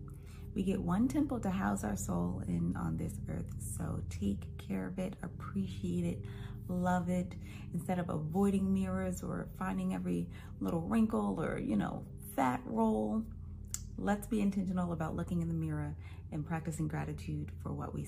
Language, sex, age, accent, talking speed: English, female, 30-49, American, 165 wpm